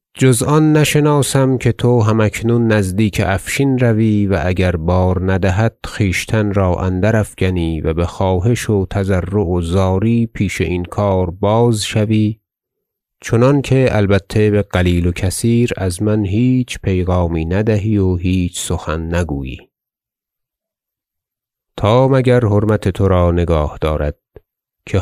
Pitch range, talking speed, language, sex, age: 90-115 Hz, 125 wpm, Persian, male, 30-49